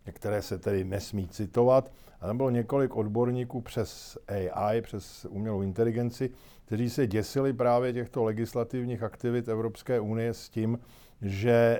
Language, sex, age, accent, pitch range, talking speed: Czech, male, 50-69, native, 105-120 Hz, 135 wpm